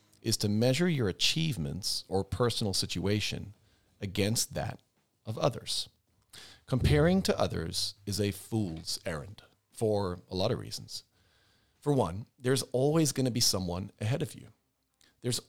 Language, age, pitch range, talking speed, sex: English, 40-59, 100-120 Hz, 135 wpm, male